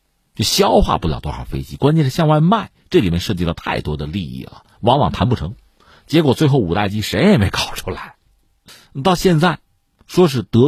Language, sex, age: Chinese, male, 50-69